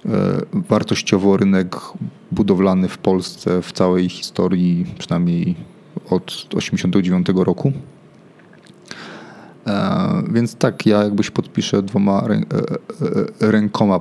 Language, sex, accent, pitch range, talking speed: Polish, male, native, 100-130 Hz, 90 wpm